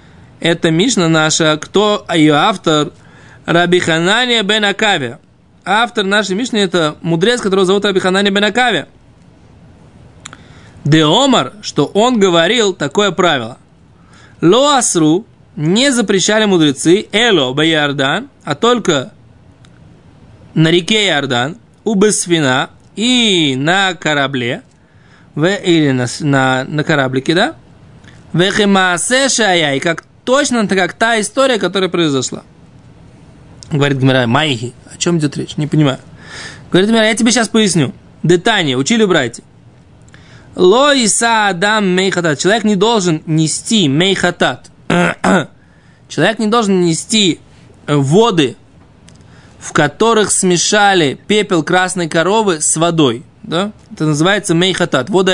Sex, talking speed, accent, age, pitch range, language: male, 105 wpm, native, 20-39, 150-210 Hz, Russian